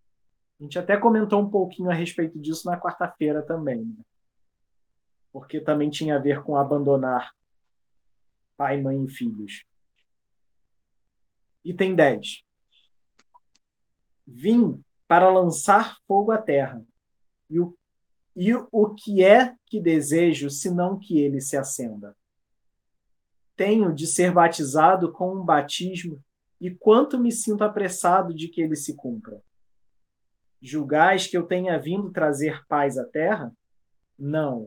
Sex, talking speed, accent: male, 125 wpm, Brazilian